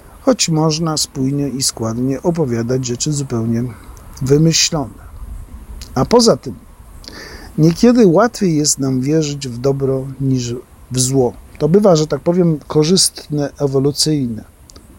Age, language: 50-69, Polish